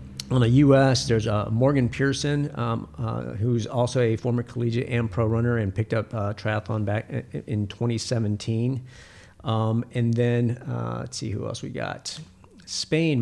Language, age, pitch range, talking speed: English, 50-69, 100-120 Hz, 170 wpm